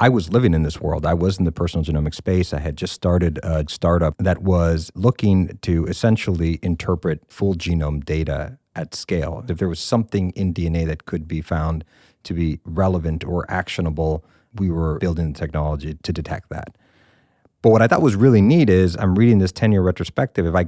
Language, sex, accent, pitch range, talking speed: English, male, American, 80-100 Hz, 195 wpm